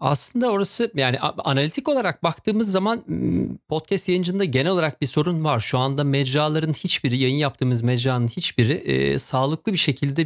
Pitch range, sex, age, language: 130-180 Hz, male, 40-59, Turkish